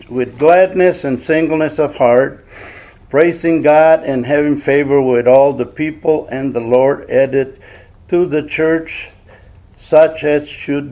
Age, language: 60-79, English